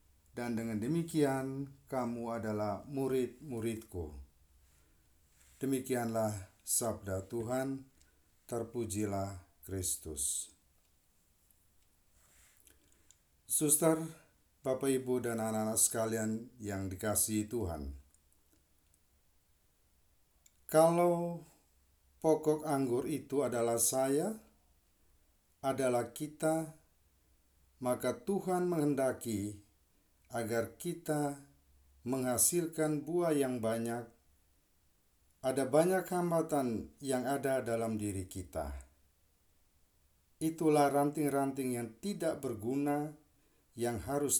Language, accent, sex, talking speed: Indonesian, native, male, 70 wpm